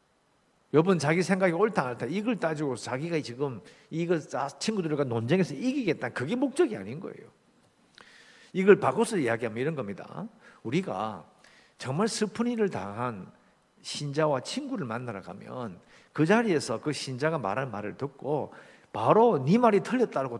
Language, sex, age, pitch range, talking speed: English, male, 50-69, 145-220 Hz, 120 wpm